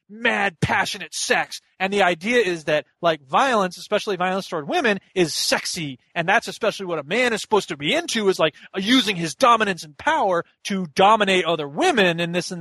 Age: 30-49